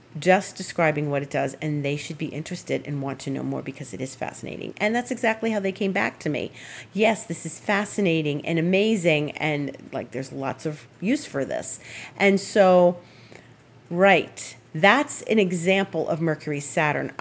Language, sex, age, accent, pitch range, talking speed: English, female, 40-59, American, 150-210 Hz, 175 wpm